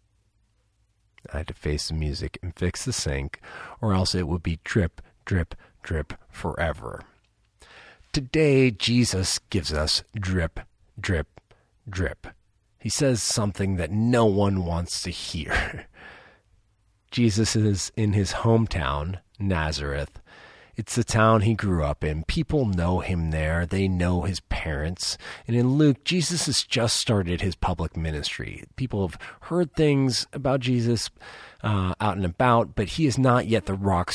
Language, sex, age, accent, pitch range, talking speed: English, male, 40-59, American, 85-115 Hz, 145 wpm